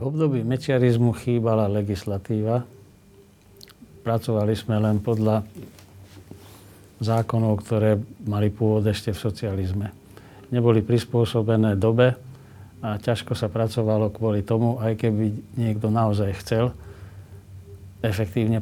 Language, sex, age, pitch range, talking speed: Slovak, male, 50-69, 100-120 Hz, 105 wpm